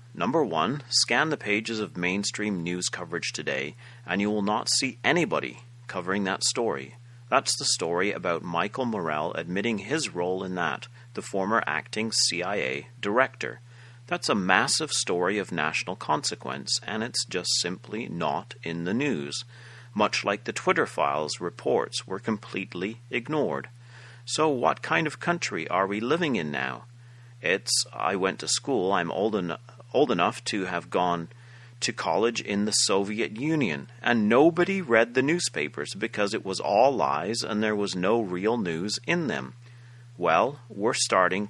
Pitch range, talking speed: 105-125 Hz, 160 wpm